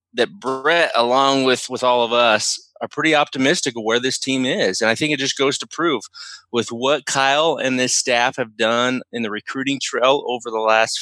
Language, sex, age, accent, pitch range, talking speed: English, male, 20-39, American, 115-150 Hz, 210 wpm